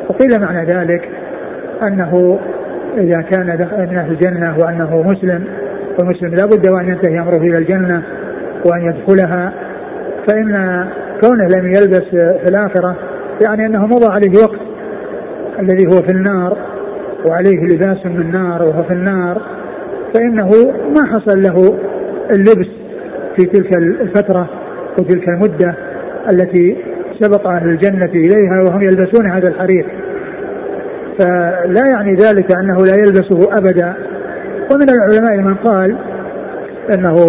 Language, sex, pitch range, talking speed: Arabic, male, 180-205 Hz, 115 wpm